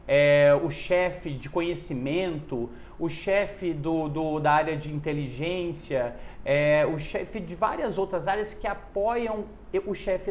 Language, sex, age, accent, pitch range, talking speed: Portuguese, male, 40-59, Brazilian, 145-195 Hz, 130 wpm